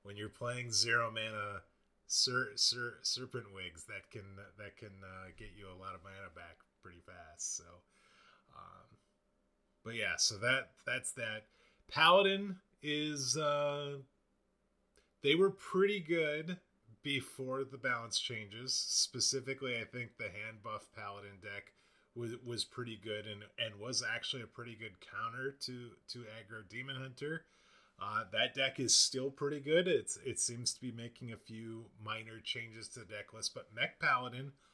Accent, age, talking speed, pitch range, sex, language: American, 30-49, 155 wpm, 105-135 Hz, male, English